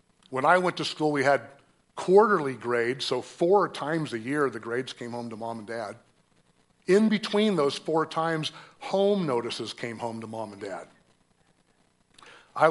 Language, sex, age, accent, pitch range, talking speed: English, male, 50-69, American, 125-160 Hz, 170 wpm